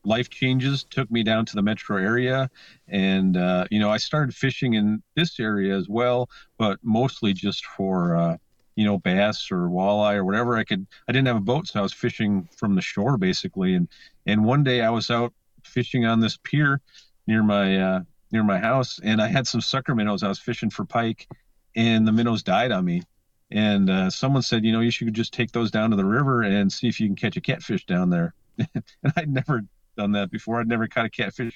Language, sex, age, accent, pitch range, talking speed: English, male, 40-59, American, 100-125 Hz, 225 wpm